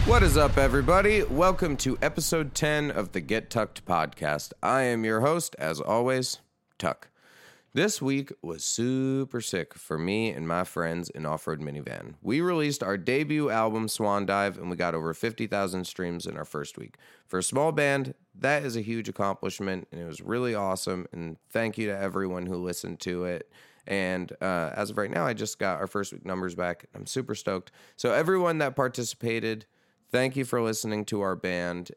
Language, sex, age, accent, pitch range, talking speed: English, male, 30-49, American, 90-125 Hz, 190 wpm